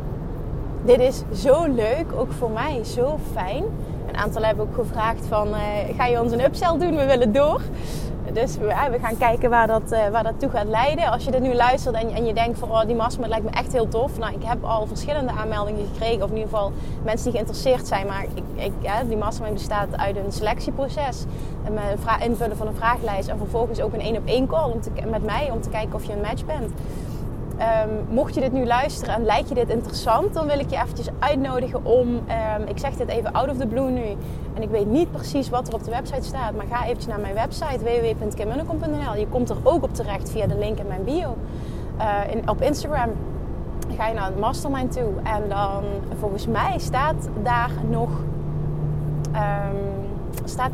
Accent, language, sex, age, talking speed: Dutch, Dutch, female, 20-39, 210 wpm